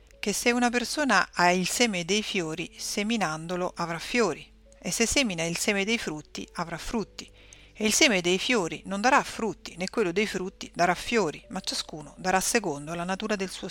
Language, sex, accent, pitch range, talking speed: Italian, female, native, 170-220 Hz, 190 wpm